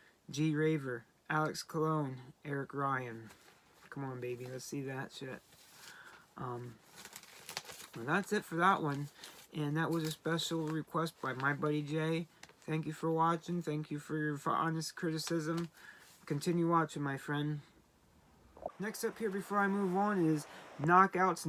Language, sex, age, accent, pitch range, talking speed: English, male, 20-39, American, 150-170 Hz, 150 wpm